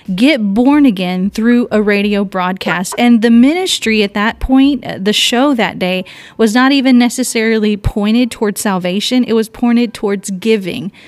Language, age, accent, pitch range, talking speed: English, 30-49, American, 200-245 Hz, 155 wpm